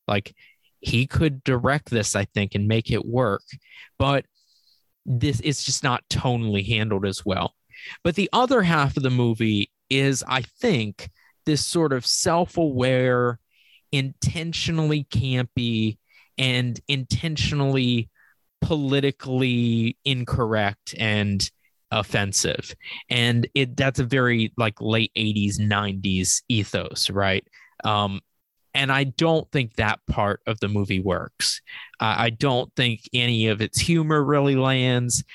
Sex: male